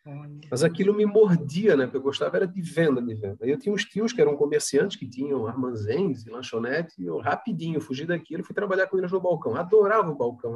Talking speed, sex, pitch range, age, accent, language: 225 wpm, male, 125-200 Hz, 30-49, Brazilian, Portuguese